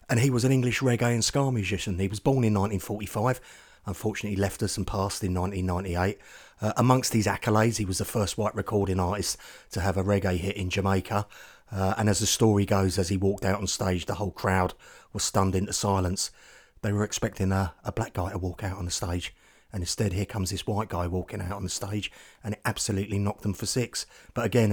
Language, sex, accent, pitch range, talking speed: English, male, British, 95-110 Hz, 225 wpm